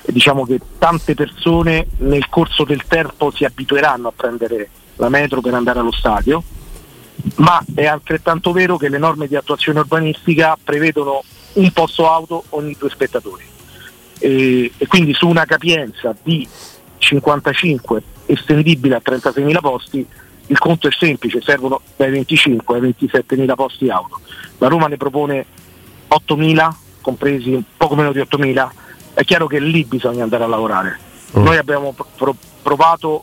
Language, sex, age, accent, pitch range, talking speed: Italian, male, 50-69, native, 130-155 Hz, 145 wpm